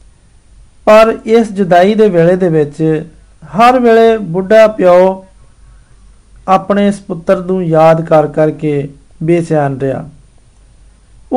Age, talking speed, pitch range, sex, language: 50-69, 95 wpm, 155-210 Hz, male, Hindi